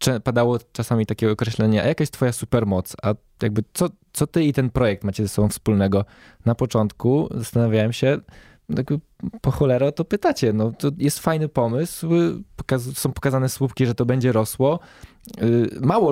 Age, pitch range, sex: 20-39, 110-150 Hz, male